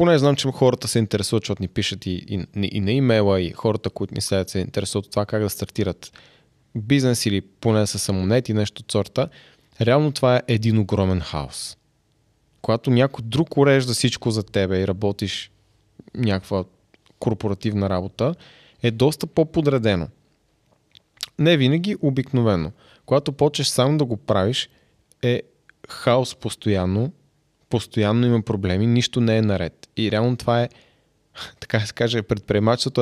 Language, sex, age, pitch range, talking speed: Bulgarian, male, 20-39, 105-125 Hz, 150 wpm